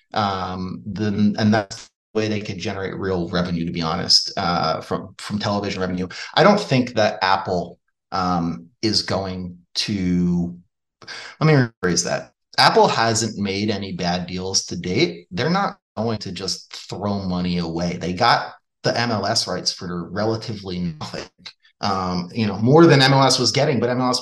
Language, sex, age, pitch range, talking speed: English, male, 30-49, 95-125 Hz, 165 wpm